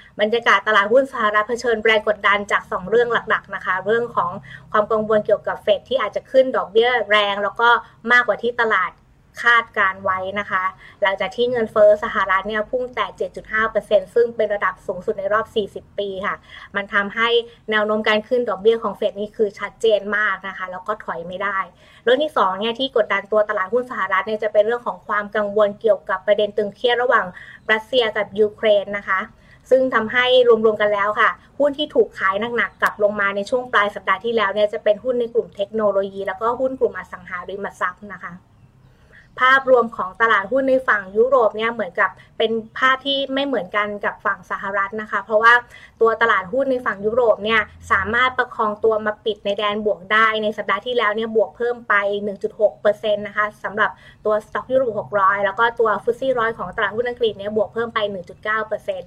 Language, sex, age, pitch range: Thai, female, 20-39, 200-235 Hz